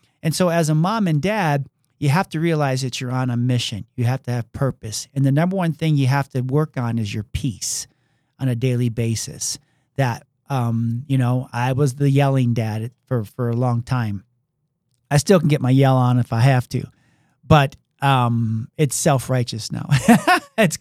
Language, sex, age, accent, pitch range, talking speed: English, male, 40-59, American, 125-150 Hz, 200 wpm